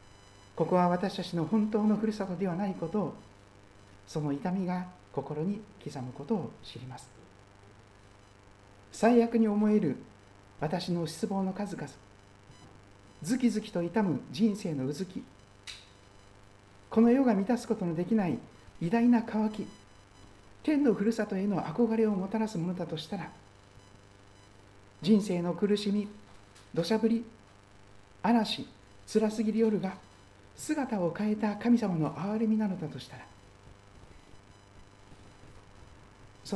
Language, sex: Japanese, male